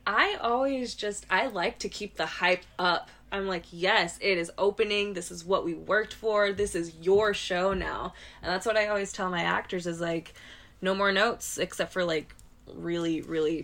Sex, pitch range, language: female, 165-195 Hz, English